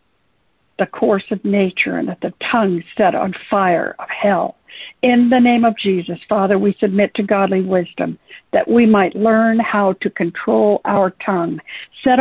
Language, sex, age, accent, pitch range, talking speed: English, female, 60-79, American, 195-230 Hz, 165 wpm